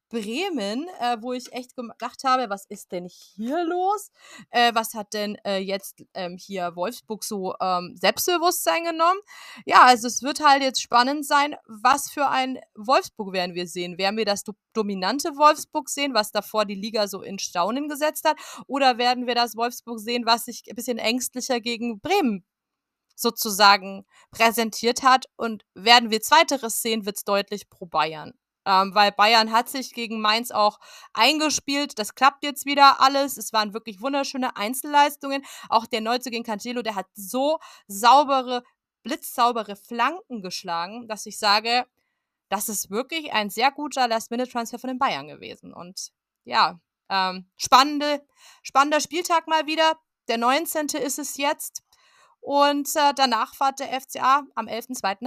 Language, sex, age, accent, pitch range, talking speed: German, female, 30-49, German, 210-280 Hz, 160 wpm